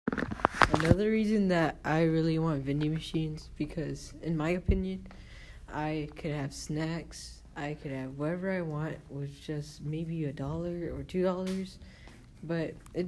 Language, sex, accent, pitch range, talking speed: English, female, American, 145-190 Hz, 145 wpm